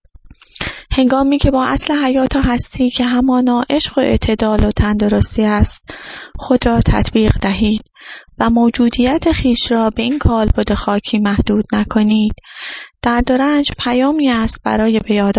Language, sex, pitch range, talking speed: English, female, 210-265 Hz, 120 wpm